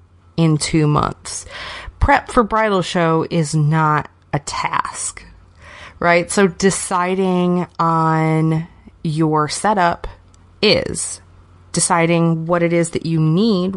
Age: 30-49